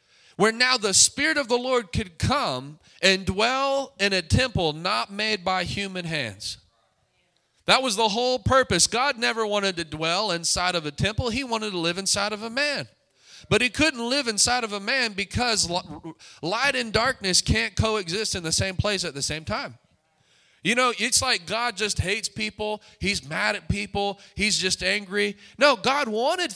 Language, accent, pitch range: English, American, 170-240 Hz